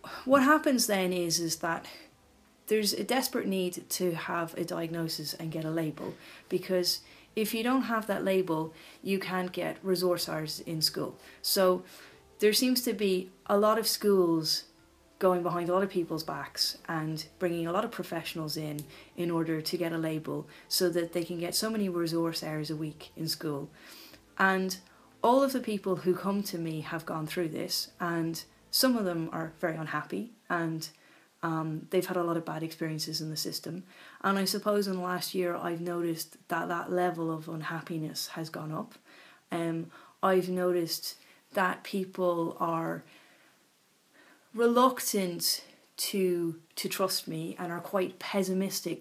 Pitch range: 160-190 Hz